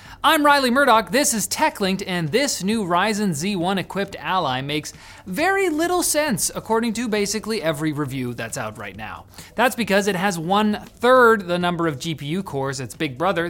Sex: male